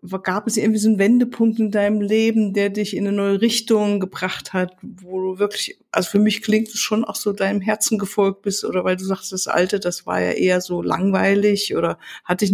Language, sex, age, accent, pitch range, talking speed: German, female, 60-79, German, 185-215 Hz, 225 wpm